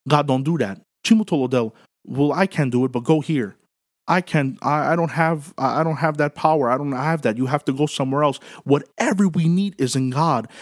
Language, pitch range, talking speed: English, 120-165 Hz, 225 wpm